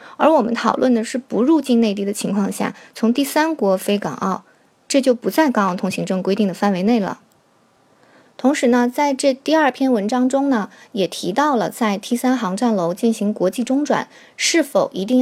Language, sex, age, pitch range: Chinese, female, 20-39, 205-260 Hz